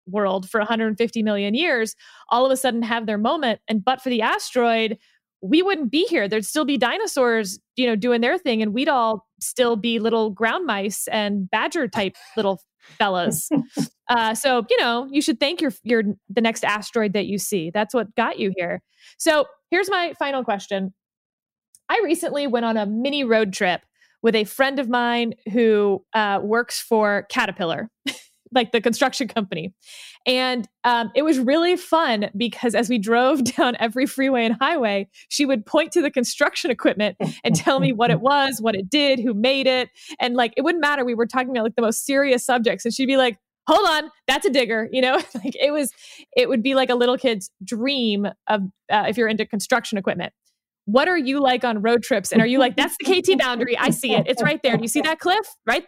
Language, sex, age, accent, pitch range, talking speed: English, female, 20-39, American, 220-270 Hz, 210 wpm